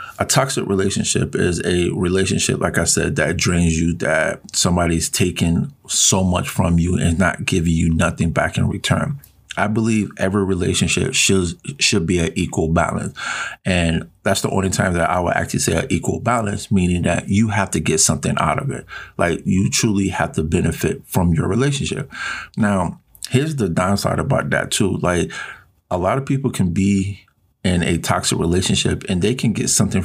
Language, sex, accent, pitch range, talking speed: English, male, American, 95-110 Hz, 185 wpm